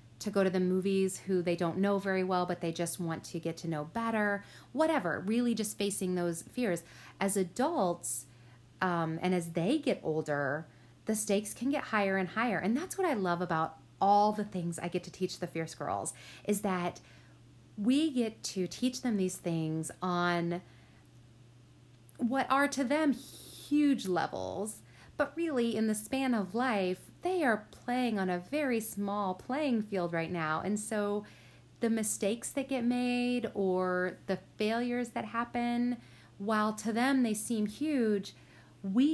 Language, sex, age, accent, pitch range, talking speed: English, female, 30-49, American, 175-235 Hz, 170 wpm